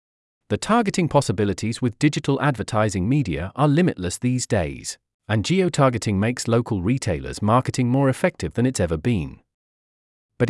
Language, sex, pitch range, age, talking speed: English, male, 105-145 Hz, 40-59, 135 wpm